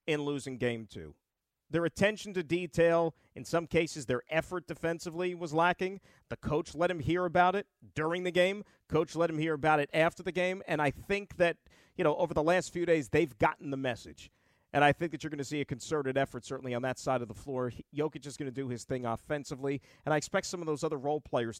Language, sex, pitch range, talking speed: English, male, 125-175 Hz, 235 wpm